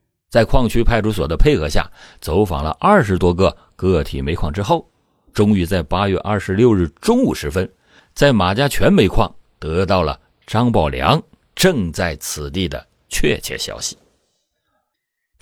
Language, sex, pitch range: Chinese, male, 90-130 Hz